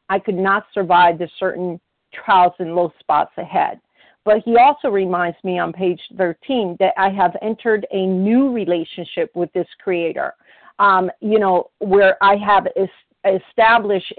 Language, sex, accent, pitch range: English, female, American, 185-235 Hz